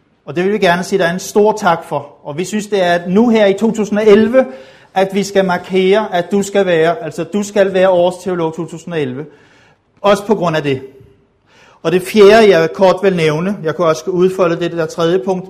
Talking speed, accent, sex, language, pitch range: 210 wpm, native, male, Danish, 155-195 Hz